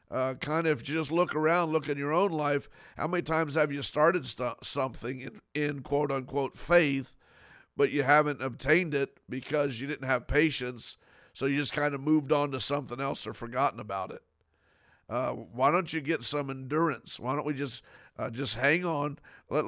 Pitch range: 130-155 Hz